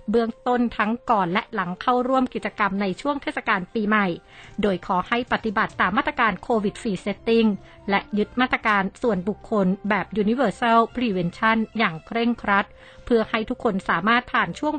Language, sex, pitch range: Thai, female, 195-235 Hz